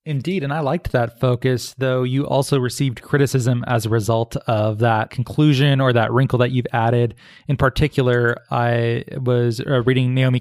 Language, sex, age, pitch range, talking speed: English, male, 20-39, 120-140 Hz, 165 wpm